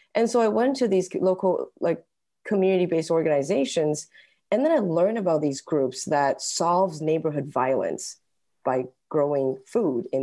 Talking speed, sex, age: 145 wpm, female, 20-39